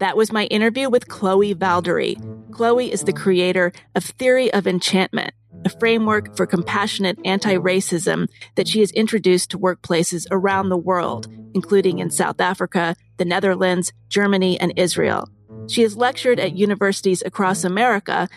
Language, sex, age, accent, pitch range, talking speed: English, female, 30-49, American, 175-225 Hz, 145 wpm